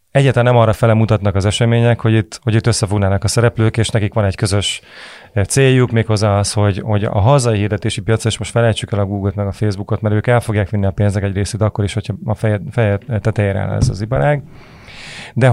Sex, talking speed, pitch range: male, 220 wpm, 105-120 Hz